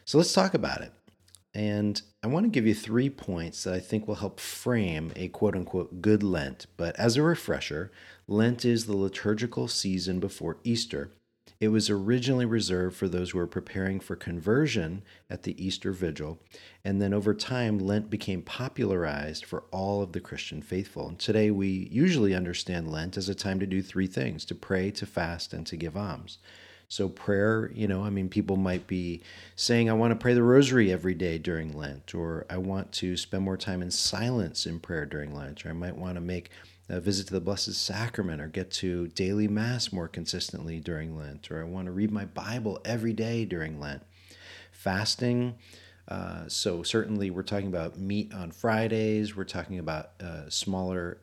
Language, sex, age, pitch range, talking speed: English, male, 40-59, 90-105 Hz, 190 wpm